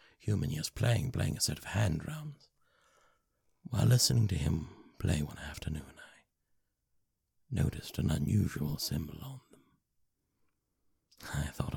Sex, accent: male, British